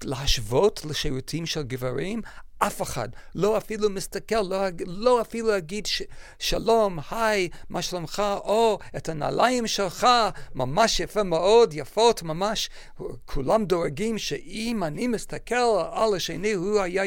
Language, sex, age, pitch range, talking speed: Hebrew, male, 50-69, 150-215 Hz, 125 wpm